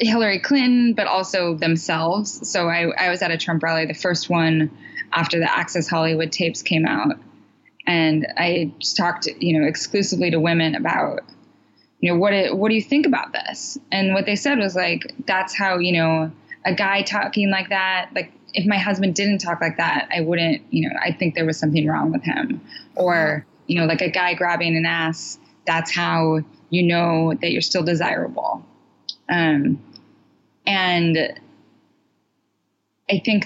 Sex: female